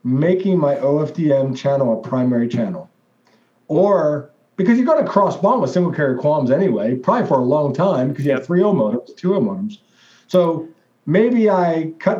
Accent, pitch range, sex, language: American, 125-165 Hz, male, English